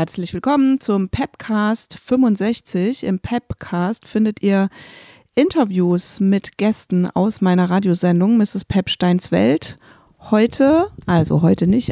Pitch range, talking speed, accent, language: 175-220 Hz, 110 wpm, German, German